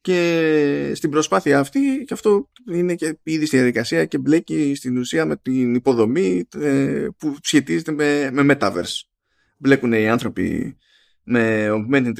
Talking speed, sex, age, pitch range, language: 135 wpm, male, 20-39, 110-150 Hz, Greek